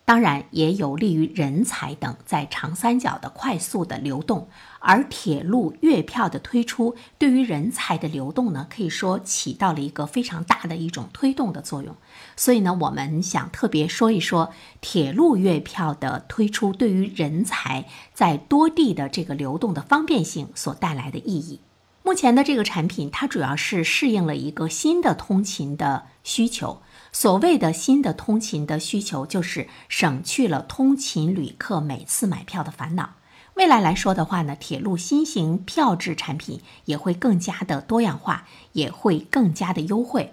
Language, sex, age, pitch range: Chinese, female, 50-69, 160-240 Hz